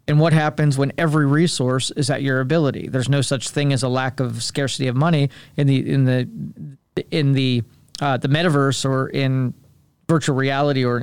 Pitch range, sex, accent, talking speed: 130-150 Hz, male, American, 190 wpm